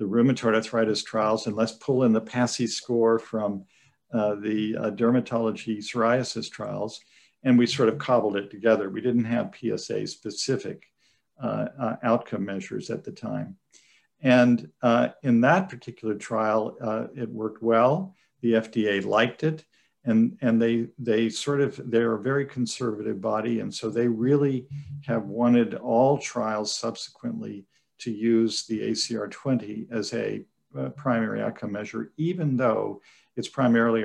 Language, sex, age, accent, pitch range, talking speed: English, male, 50-69, American, 110-125 Hz, 150 wpm